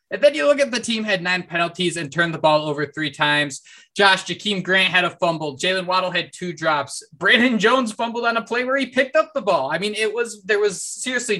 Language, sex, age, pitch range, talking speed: English, male, 20-39, 155-190 Hz, 250 wpm